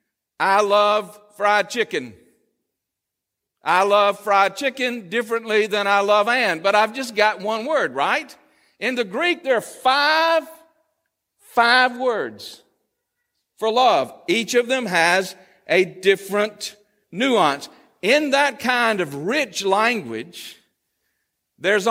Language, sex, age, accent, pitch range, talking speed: English, male, 50-69, American, 190-260 Hz, 120 wpm